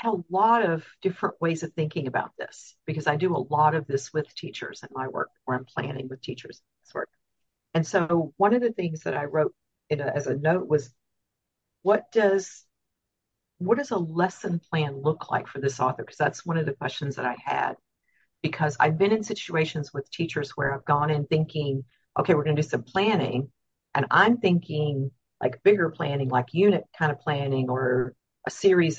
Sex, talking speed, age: female, 205 wpm, 50-69